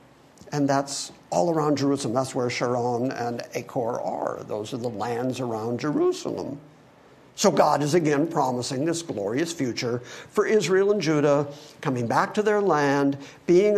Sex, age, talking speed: male, 50-69, 150 wpm